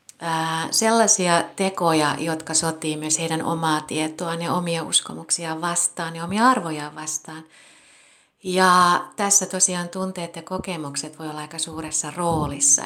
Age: 30-49